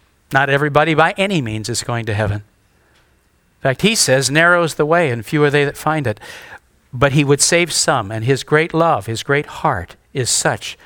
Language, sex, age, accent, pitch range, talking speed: English, male, 60-79, American, 120-175 Hz, 205 wpm